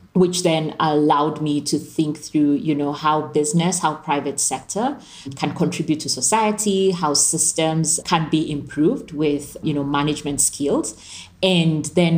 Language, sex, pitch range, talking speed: English, female, 145-165 Hz, 150 wpm